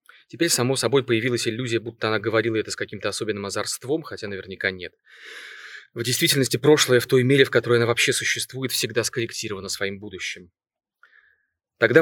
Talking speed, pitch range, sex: 160 wpm, 110-130 Hz, male